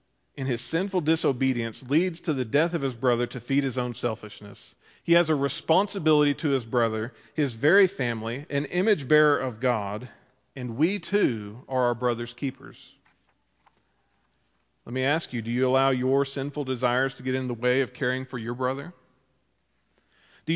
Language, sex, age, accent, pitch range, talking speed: English, male, 40-59, American, 120-155 Hz, 170 wpm